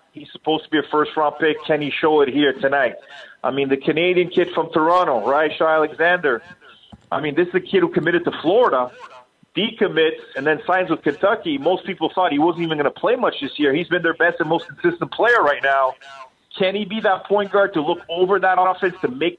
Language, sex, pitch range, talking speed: English, male, 150-180 Hz, 230 wpm